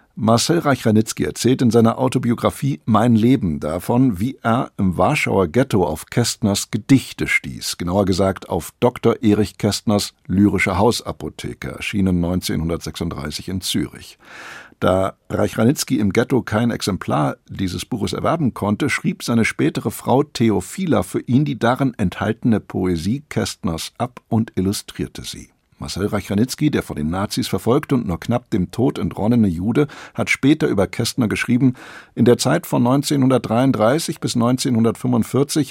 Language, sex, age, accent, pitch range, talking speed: German, male, 60-79, German, 95-125 Hz, 140 wpm